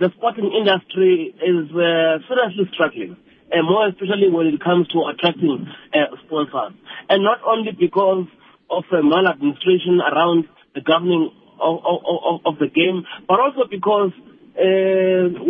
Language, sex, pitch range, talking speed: English, male, 160-200 Hz, 145 wpm